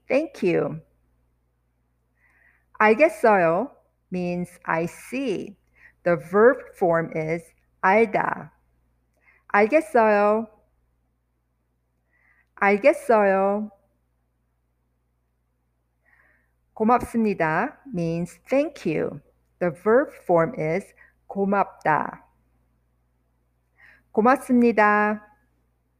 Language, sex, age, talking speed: English, female, 50-69, 60 wpm